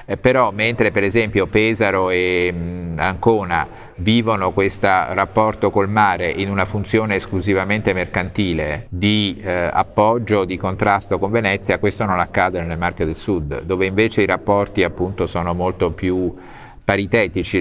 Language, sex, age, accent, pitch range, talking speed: Italian, male, 50-69, native, 90-105 Hz, 140 wpm